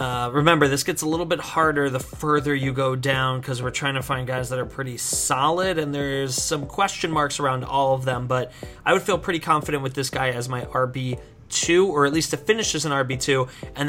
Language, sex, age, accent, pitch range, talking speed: English, male, 30-49, American, 130-155 Hz, 230 wpm